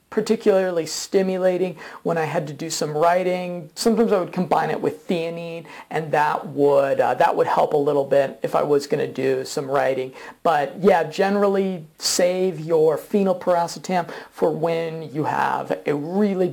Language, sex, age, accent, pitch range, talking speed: English, male, 40-59, American, 160-220 Hz, 165 wpm